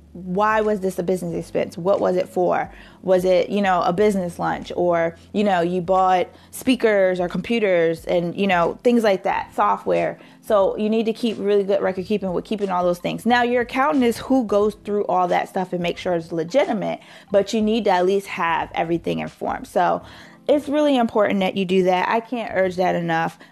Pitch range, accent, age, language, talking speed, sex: 180-225 Hz, American, 20-39, English, 210 wpm, female